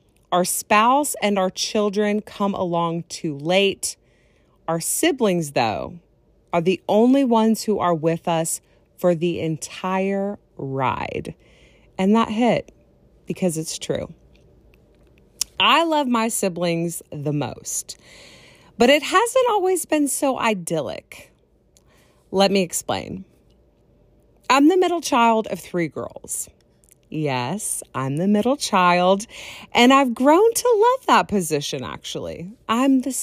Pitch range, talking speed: 170-240 Hz, 125 wpm